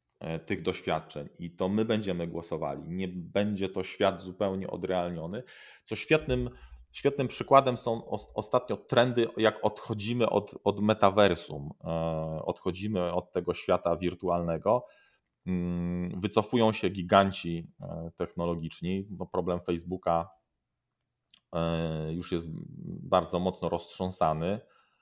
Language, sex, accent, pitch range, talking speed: Polish, male, native, 90-105 Hz, 100 wpm